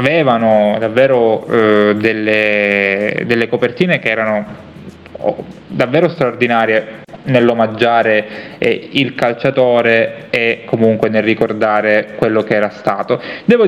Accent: native